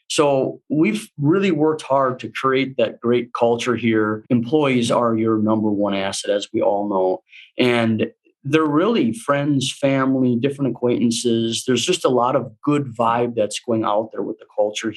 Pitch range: 115-135 Hz